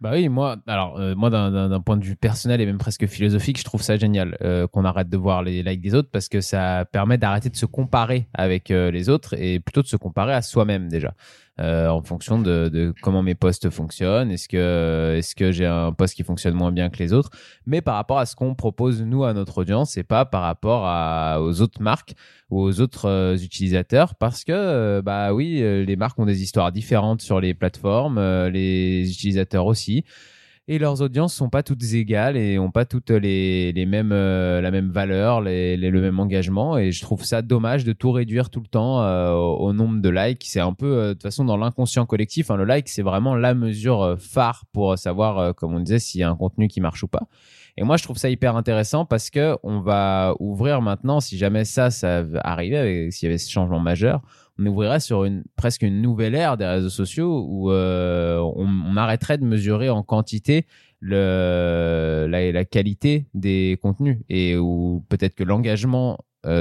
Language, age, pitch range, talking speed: French, 20-39, 90-120 Hz, 220 wpm